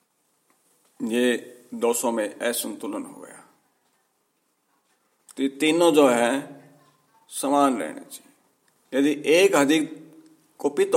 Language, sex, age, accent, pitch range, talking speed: Hindi, male, 50-69, native, 140-165 Hz, 100 wpm